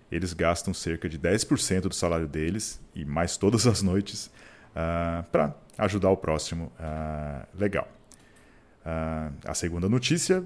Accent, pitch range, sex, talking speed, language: Brazilian, 85-120 Hz, male, 120 wpm, Portuguese